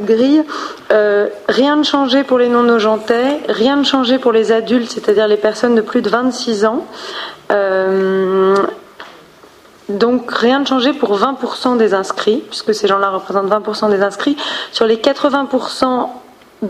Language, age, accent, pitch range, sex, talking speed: French, 30-49, French, 210-255 Hz, female, 145 wpm